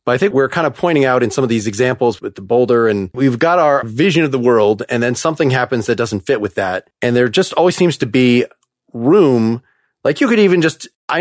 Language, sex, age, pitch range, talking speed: English, male, 30-49, 130-160 Hz, 250 wpm